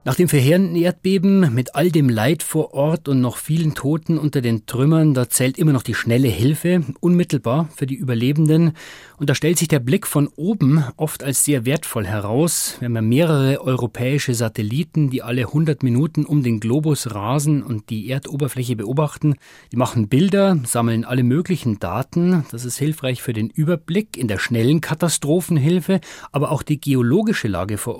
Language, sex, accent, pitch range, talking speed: German, male, German, 120-155 Hz, 175 wpm